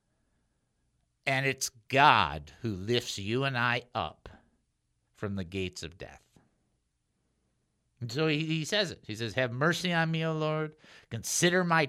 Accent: American